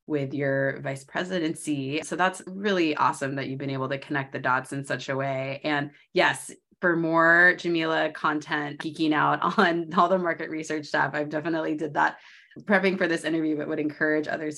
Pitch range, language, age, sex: 140-165 Hz, English, 20-39, female